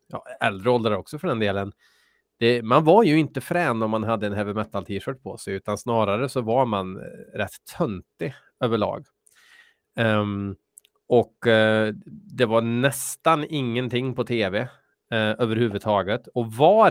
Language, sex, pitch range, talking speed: Swedish, male, 105-130 Hz, 145 wpm